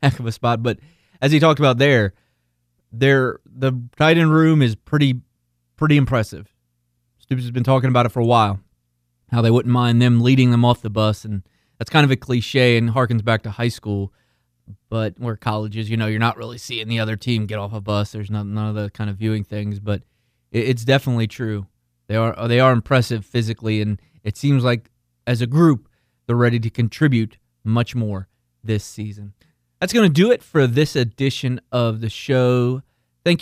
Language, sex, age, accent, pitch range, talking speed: English, male, 20-39, American, 110-130 Hz, 200 wpm